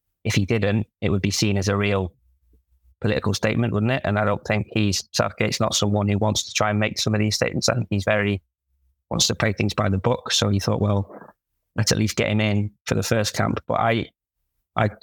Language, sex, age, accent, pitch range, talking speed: English, male, 20-39, British, 100-115 Hz, 235 wpm